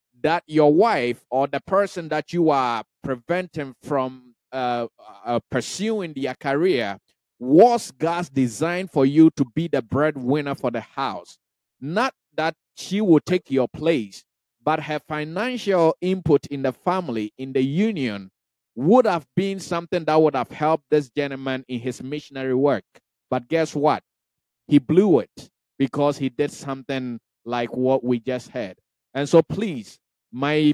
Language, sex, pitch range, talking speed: English, male, 130-170 Hz, 150 wpm